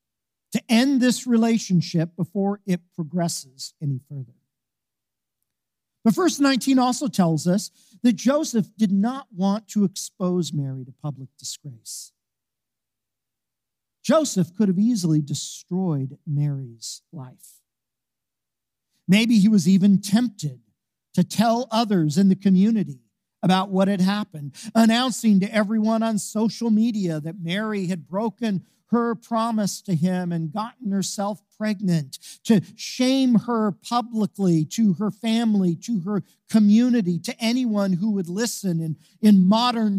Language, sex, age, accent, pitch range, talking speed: English, male, 50-69, American, 160-225 Hz, 125 wpm